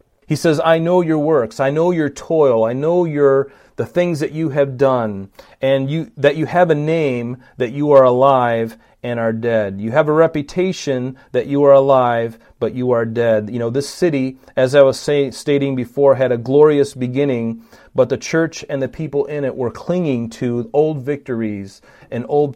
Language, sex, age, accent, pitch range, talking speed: English, male, 40-59, American, 115-140 Hz, 195 wpm